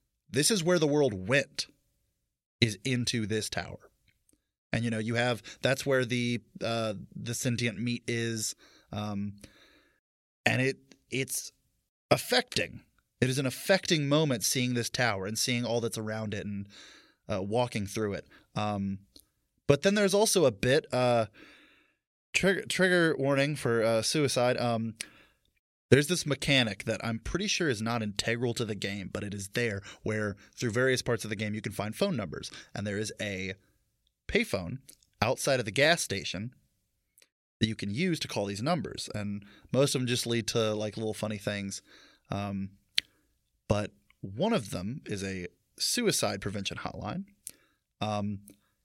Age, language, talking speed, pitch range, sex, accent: 20-39, English, 160 wpm, 105-125 Hz, male, American